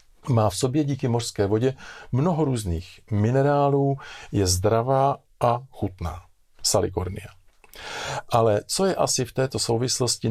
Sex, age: male, 50-69